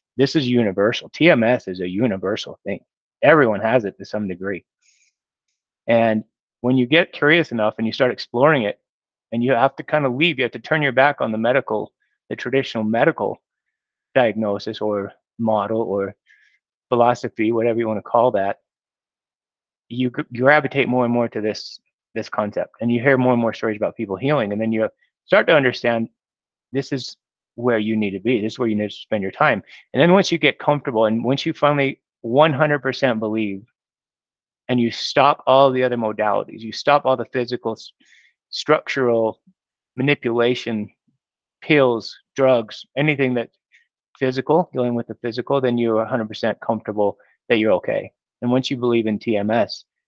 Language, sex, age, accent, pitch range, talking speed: English, male, 30-49, American, 110-130 Hz, 175 wpm